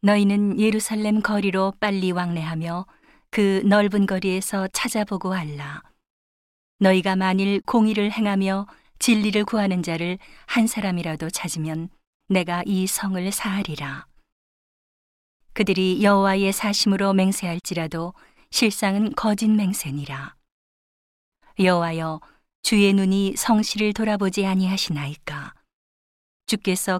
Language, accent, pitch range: Korean, native, 175-205 Hz